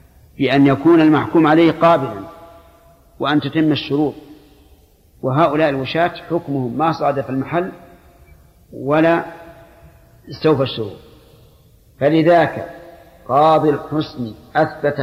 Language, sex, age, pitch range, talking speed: Arabic, male, 50-69, 125-155 Hz, 85 wpm